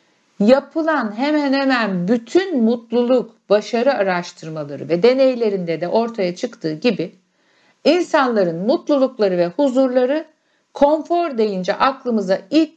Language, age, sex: Turkish, 60-79, female